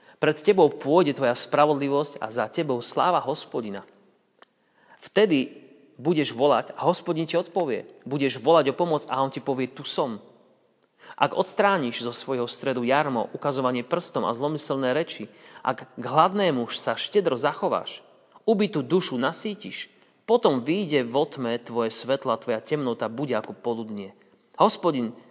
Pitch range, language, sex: 120-155 Hz, Slovak, male